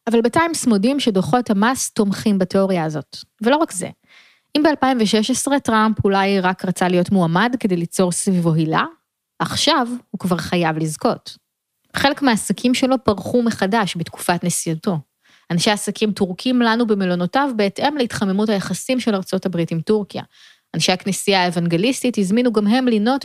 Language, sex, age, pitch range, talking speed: Hebrew, female, 20-39, 180-240 Hz, 140 wpm